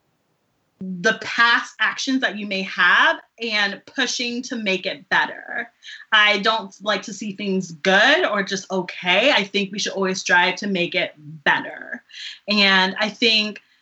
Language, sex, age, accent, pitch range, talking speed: English, female, 20-39, American, 195-250 Hz, 155 wpm